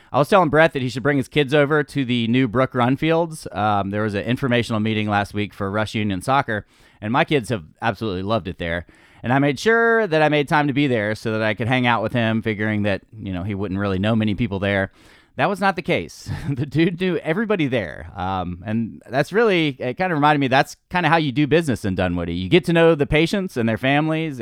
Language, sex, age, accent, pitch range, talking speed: English, male, 30-49, American, 110-150 Hz, 255 wpm